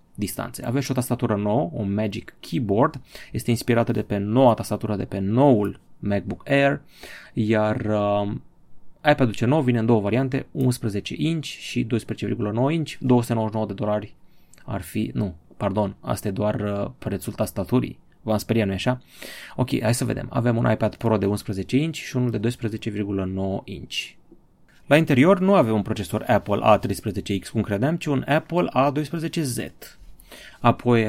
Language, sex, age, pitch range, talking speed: Romanian, male, 30-49, 105-135 Hz, 155 wpm